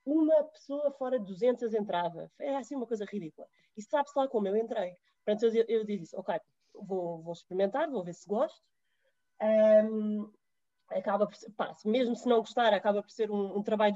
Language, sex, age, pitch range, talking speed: Portuguese, female, 20-39, 205-250 Hz, 190 wpm